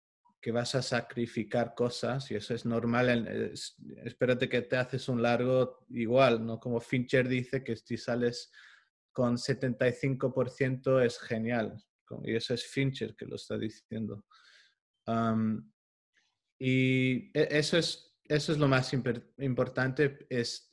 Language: Spanish